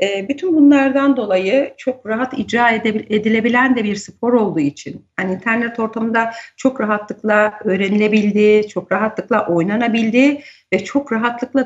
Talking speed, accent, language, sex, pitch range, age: 125 wpm, native, Turkish, female, 205-250 Hz, 50-69